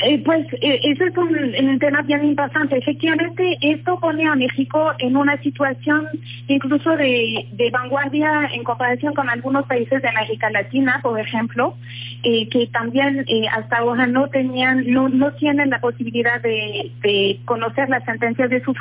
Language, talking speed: Spanish, 165 wpm